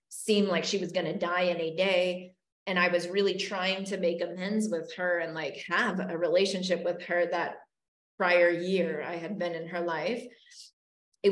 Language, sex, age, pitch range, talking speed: English, female, 20-39, 175-220 Hz, 185 wpm